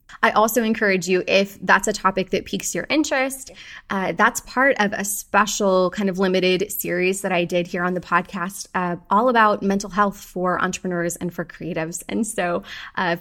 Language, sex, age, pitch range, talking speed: English, female, 20-39, 185-255 Hz, 190 wpm